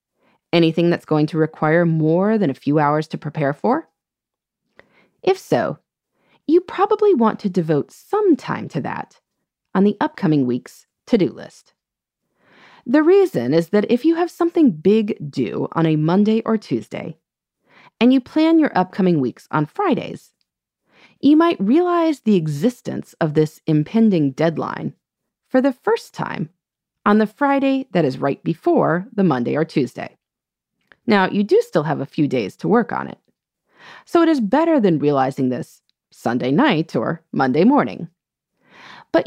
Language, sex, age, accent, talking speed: English, female, 30-49, American, 155 wpm